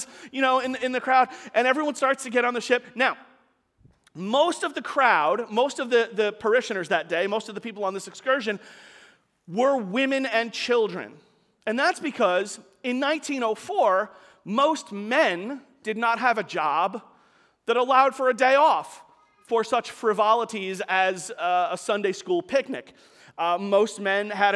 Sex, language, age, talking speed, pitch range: male, English, 40-59, 165 wpm, 205-265 Hz